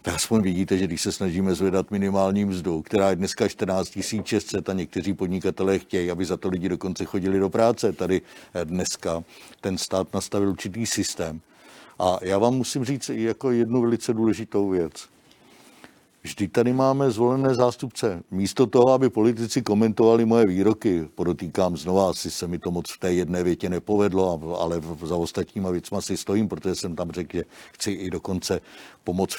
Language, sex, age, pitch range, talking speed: Czech, male, 60-79, 95-110 Hz, 170 wpm